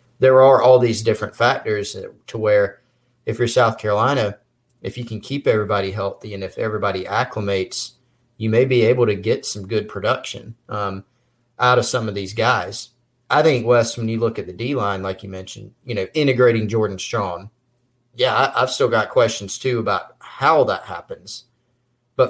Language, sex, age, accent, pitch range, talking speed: English, male, 30-49, American, 105-125 Hz, 180 wpm